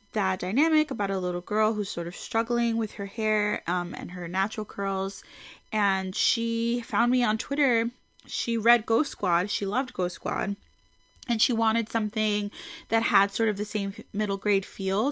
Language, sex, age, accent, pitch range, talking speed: English, female, 20-39, American, 185-235 Hz, 180 wpm